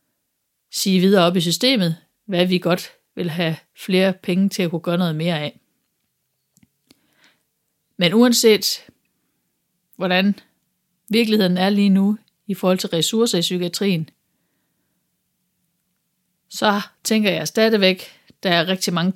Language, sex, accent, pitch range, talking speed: Danish, female, native, 170-200 Hz, 125 wpm